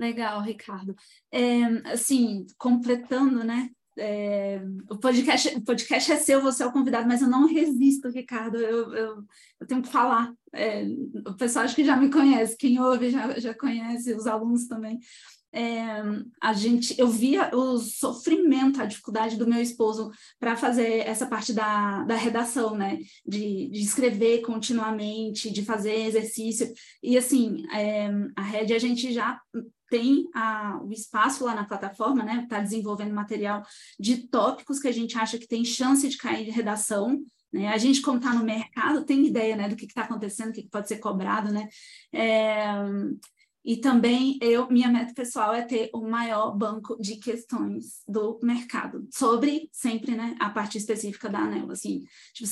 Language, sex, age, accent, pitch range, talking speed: Portuguese, female, 10-29, Brazilian, 215-255 Hz, 165 wpm